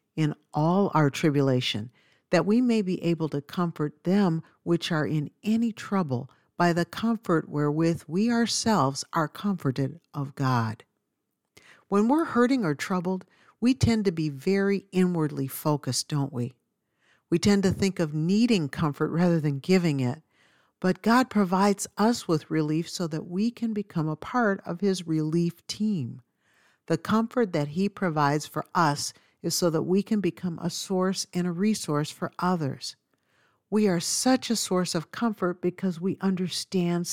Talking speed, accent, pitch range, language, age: 160 wpm, American, 150-200 Hz, English, 50-69